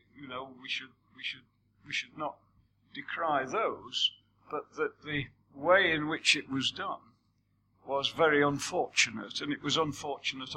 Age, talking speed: 50-69, 155 wpm